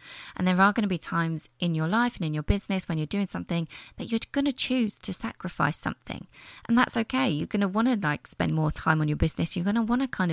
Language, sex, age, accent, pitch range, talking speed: English, female, 20-39, British, 160-195 Hz, 275 wpm